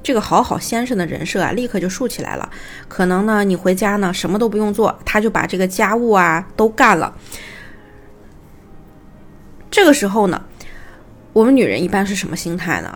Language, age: Chinese, 20-39